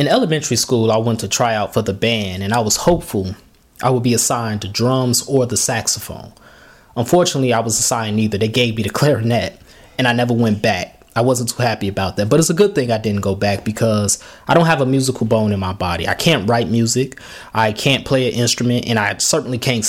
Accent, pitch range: American, 110-130 Hz